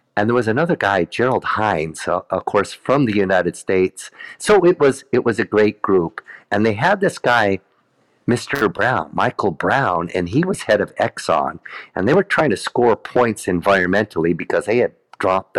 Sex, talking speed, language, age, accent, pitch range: male, 190 wpm, English, 50-69, American, 95-125 Hz